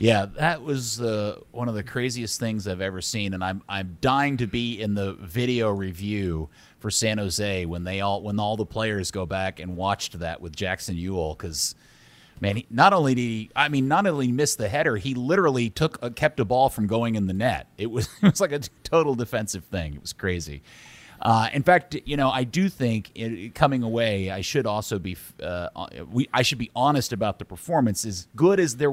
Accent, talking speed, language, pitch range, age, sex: American, 225 wpm, English, 100-120 Hz, 30-49, male